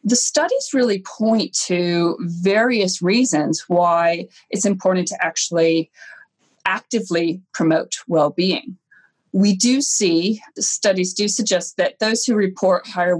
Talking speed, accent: 125 wpm, American